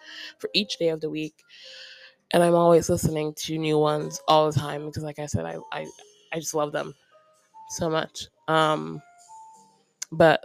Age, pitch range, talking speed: 20-39, 155-195 Hz, 170 wpm